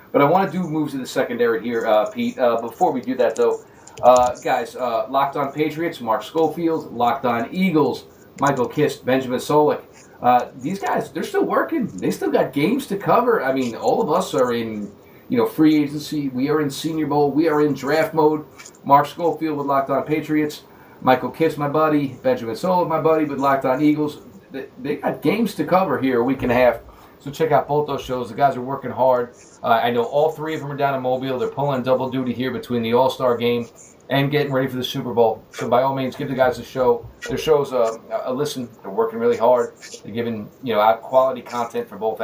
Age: 40-59